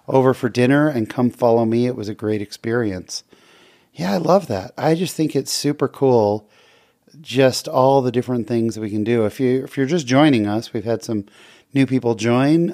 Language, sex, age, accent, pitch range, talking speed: English, male, 30-49, American, 110-135 Hz, 205 wpm